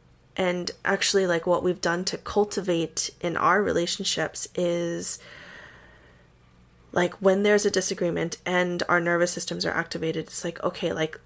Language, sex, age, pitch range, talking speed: English, female, 20-39, 150-185 Hz, 145 wpm